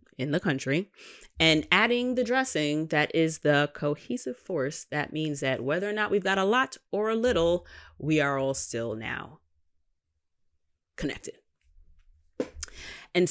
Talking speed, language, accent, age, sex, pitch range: 145 wpm, English, American, 30-49, female, 130-180 Hz